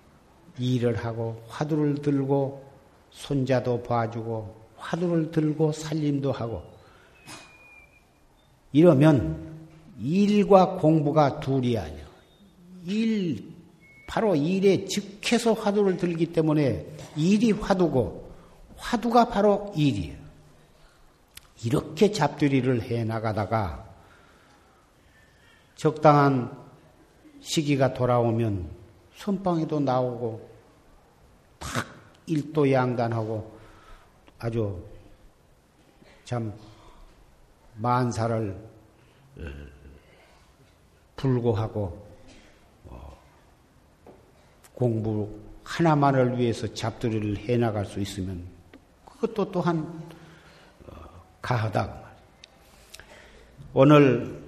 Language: Korean